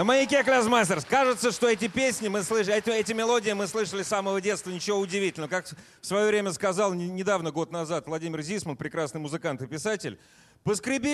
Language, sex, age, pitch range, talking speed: Russian, male, 30-49, 165-225 Hz, 185 wpm